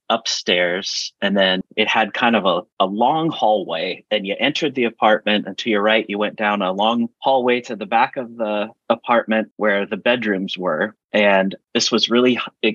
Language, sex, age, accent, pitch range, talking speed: English, male, 30-49, American, 100-130 Hz, 195 wpm